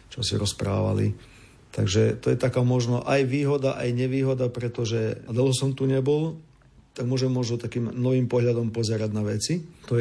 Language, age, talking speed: Slovak, 40-59, 170 wpm